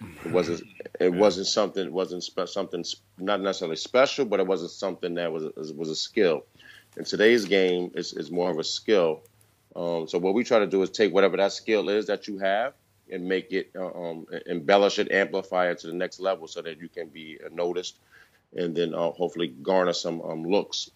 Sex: male